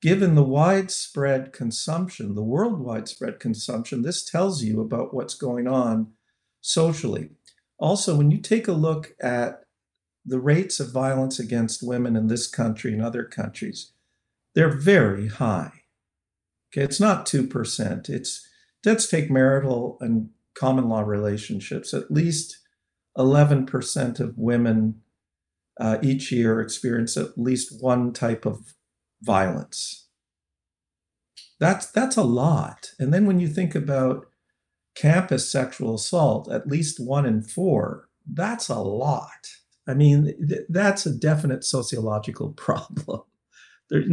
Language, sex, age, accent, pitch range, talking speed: English, male, 50-69, American, 110-155 Hz, 130 wpm